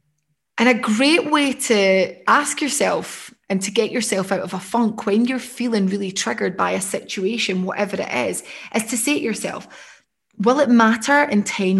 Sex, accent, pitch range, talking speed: female, British, 190-230 Hz, 185 wpm